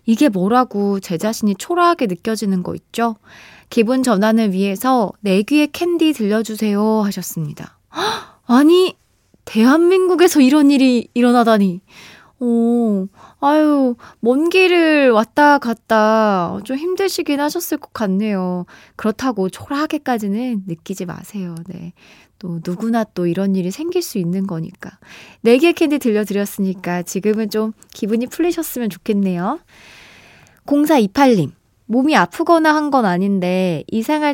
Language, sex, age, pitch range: Korean, female, 20-39, 190-275 Hz